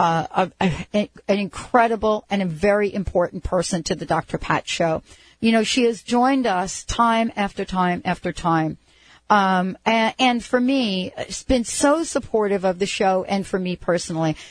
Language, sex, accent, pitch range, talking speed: English, female, American, 180-245 Hz, 165 wpm